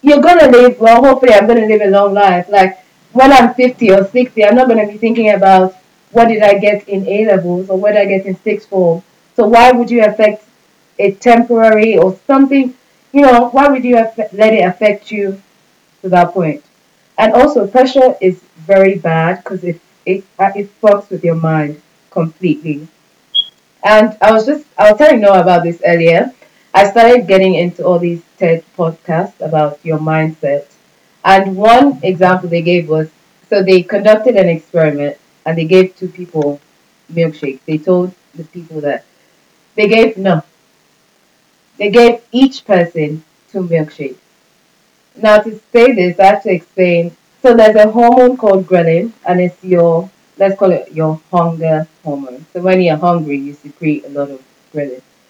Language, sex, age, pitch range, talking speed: English, female, 20-39, 170-220 Hz, 175 wpm